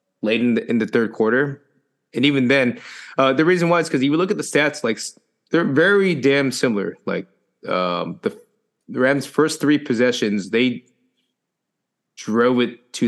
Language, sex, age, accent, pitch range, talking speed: English, male, 20-39, American, 105-130 Hz, 170 wpm